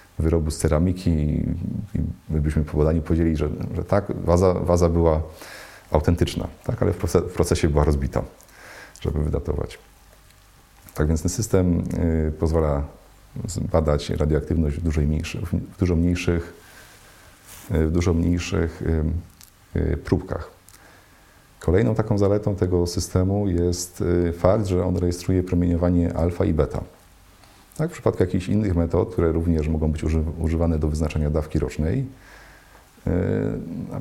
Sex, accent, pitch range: male, native, 80-95 Hz